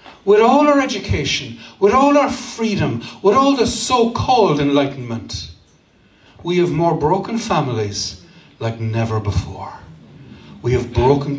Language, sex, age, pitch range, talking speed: English, male, 60-79, 110-145 Hz, 130 wpm